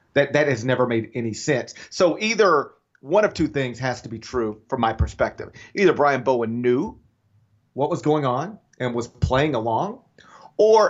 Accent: American